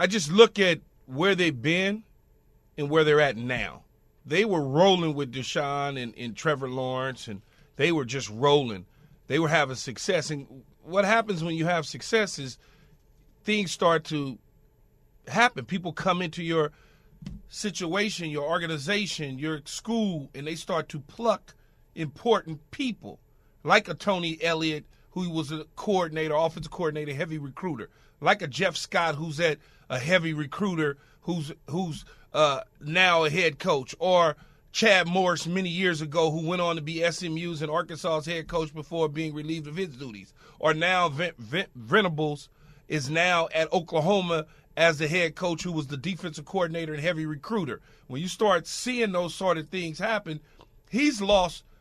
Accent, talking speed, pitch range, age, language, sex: American, 160 wpm, 150-185 Hz, 40-59, English, male